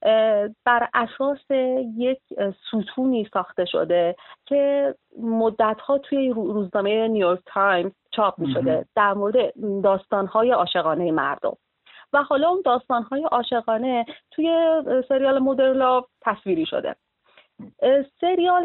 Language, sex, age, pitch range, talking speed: Persian, female, 30-49, 185-265 Hz, 100 wpm